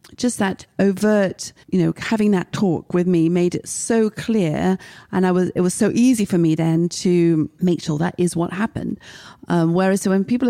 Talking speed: 205 wpm